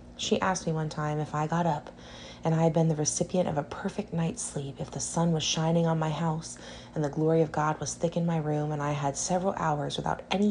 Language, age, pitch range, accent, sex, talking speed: English, 30-49, 145-180 Hz, American, female, 255 wpm